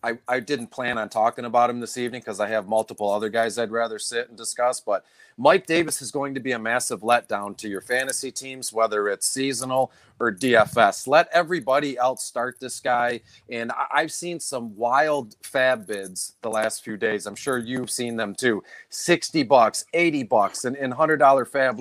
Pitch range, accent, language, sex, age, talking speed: 120-150 Hz, American, English, male, 40-59, 200 wpm